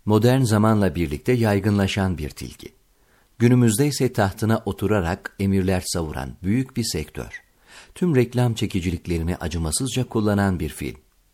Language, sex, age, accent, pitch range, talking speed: Turkish, male, 50-69, native, 85-115 Hz, 115 wpm